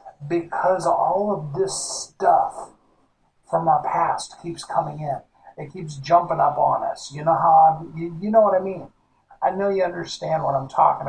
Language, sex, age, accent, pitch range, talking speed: English, male, 50-69, American, 140-170 Hz, 185 wpm